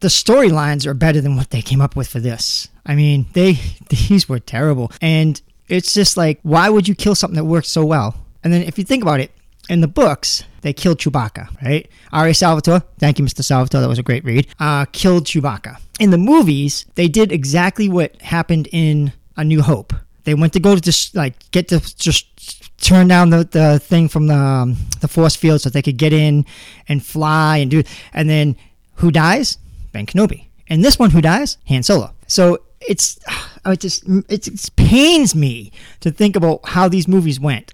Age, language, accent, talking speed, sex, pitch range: 40-59, English, American, 205 wpm, male, 140-175 Hz